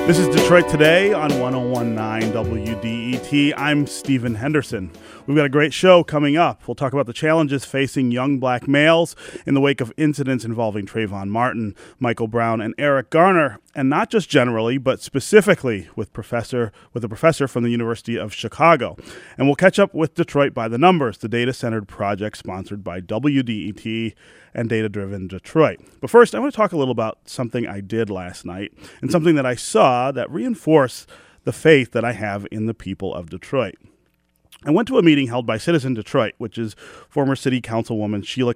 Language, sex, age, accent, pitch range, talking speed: English, male, 30-49, American, 110-150 Hz, 185 wpm